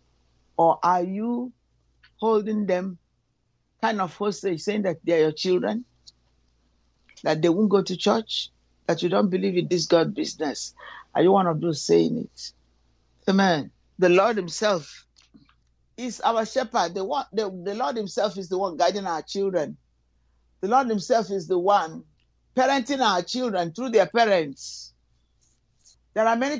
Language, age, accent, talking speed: English, 60-79, Nigerian, 155 wpm